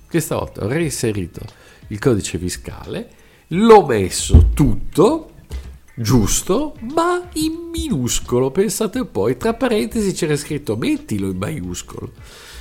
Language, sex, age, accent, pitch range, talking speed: Italian, male, 50-69, native, 95-155 Hz, 105 wpm